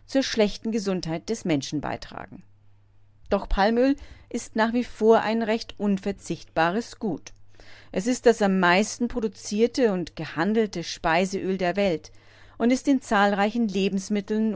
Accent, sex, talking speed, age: German, female, 130 wpm, 40-59